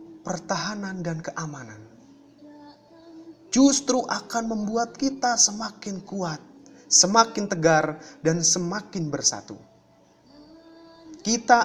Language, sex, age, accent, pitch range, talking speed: Indonesian, male, 20-39, native, 165-240 Hz, 75 wpm